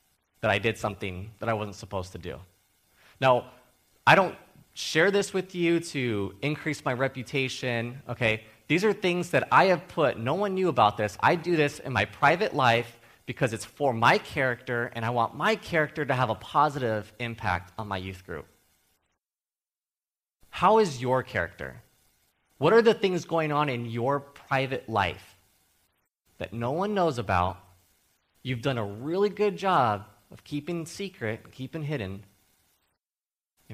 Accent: American